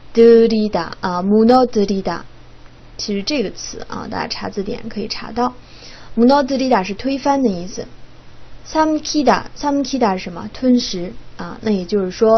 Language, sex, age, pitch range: Chinese, female, 20-39, 200-250 Hz